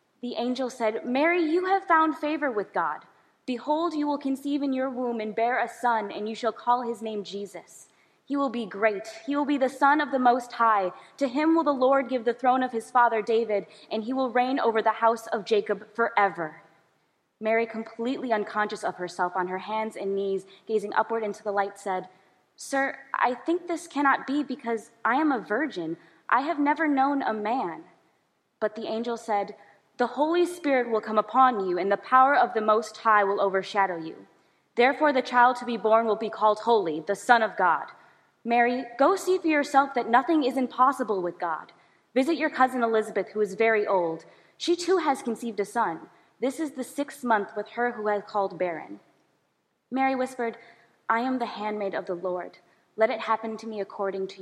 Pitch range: 205-265 Hz